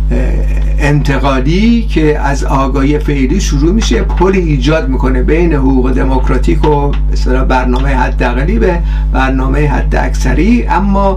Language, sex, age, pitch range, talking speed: Persian, male, 50-69, 125-165 Hz, 120 wpm